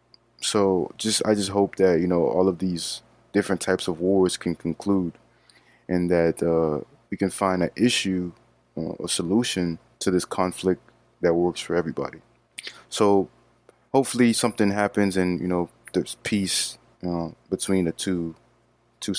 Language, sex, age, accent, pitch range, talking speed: English, male, 20-39, American, 90-115 Hz, 160 wpm